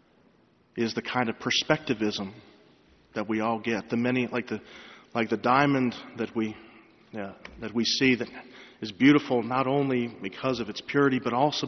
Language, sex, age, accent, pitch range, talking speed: English, male, 40-59, American, 110-125 Hz, 170 wpm